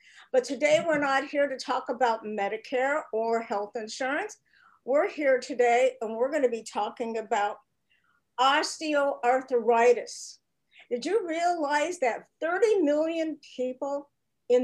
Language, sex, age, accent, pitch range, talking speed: English, female, 50-69, American, 230-290 Hz, 125 wpm